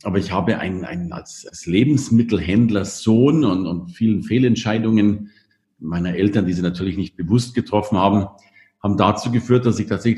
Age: 50-69